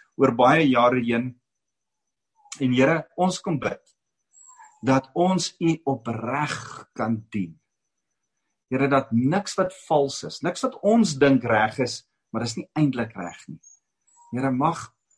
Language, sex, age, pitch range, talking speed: English, male, 50-69, 110-145 Hz, 140 wpm